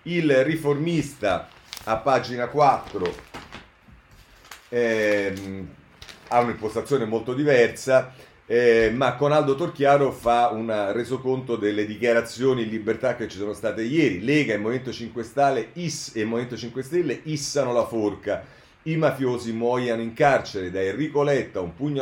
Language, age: Italian, 40-59